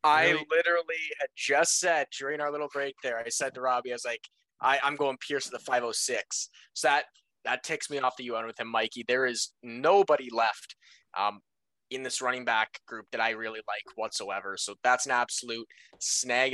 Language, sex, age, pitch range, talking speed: English, male, 20-39, 120-145 Hz, 195 wpm